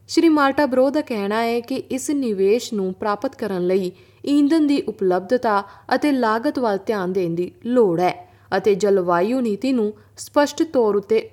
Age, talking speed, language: 20-39, 160 wpm, Punjabi